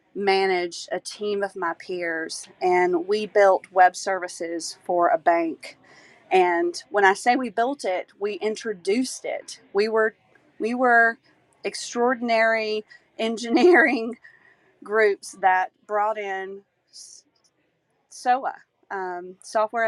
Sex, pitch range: female, 180-225 Hz